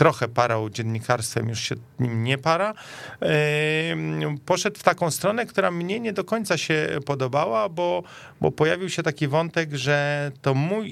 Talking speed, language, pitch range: 150 wpm, Polish, 120-155 Hz